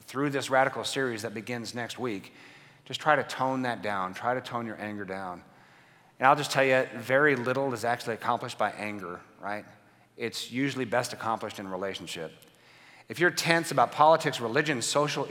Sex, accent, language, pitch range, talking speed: male, American, English, 115-155 Hz, 185 wpm